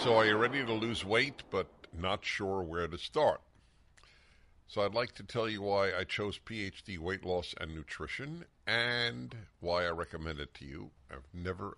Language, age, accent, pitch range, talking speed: English, 60-79, American, 85-115 Hz, 185 wpm